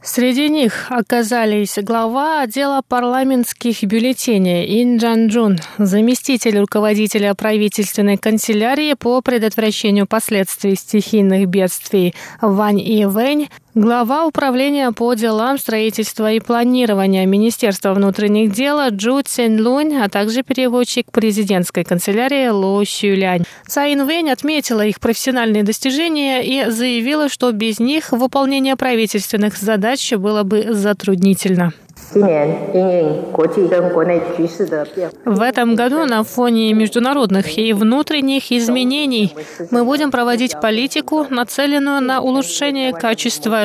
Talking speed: 105 wpm